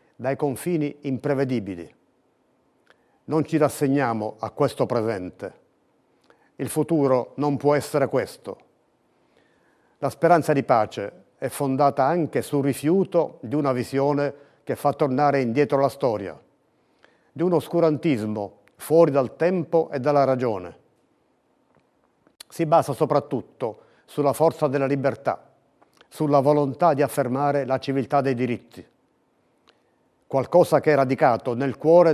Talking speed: 120 wpm